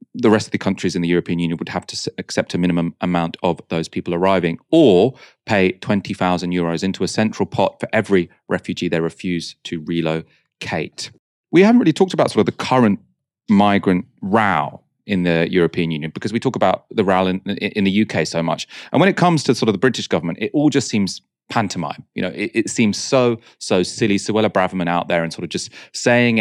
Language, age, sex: English, 30-49, male